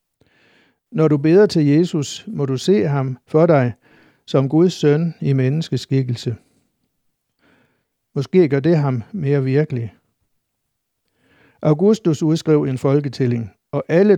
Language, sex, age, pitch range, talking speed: Danish, male, 60-79, 130-155 Hz, 120 wpm